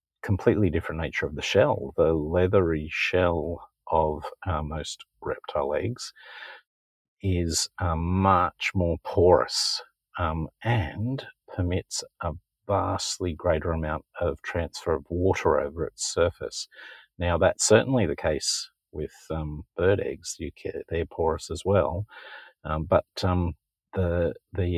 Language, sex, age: English, male, 50-69